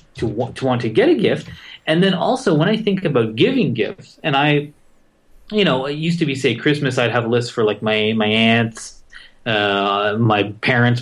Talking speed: 200 wpm